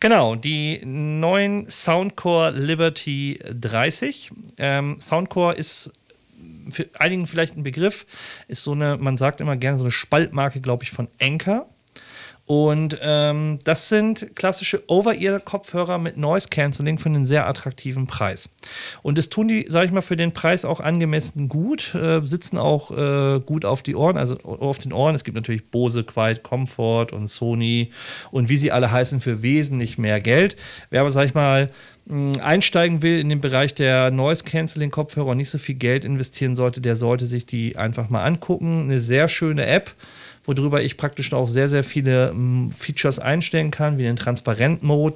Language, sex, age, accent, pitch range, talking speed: German, male, 40-59, German, 125-160 Hz, 170 wpm